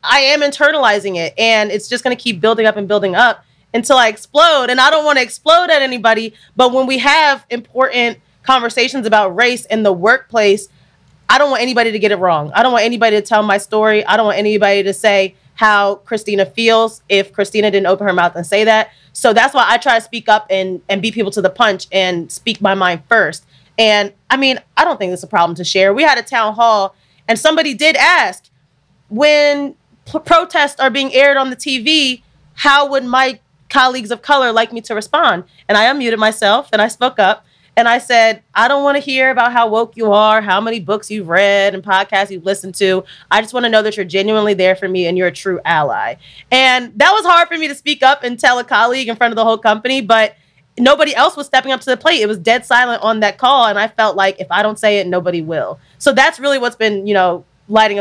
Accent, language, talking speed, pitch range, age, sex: American, English, 240 wpm, 200-255 Hz, 30-49, female